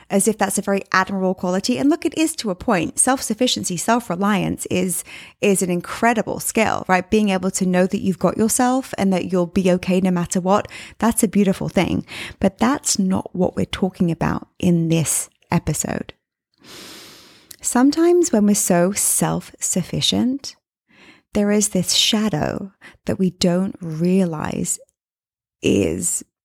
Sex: female